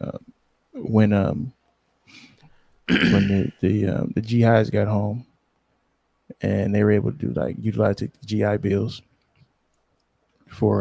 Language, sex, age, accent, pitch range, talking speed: English, male, 20-39, American, 100-115 Hz, 130 wpm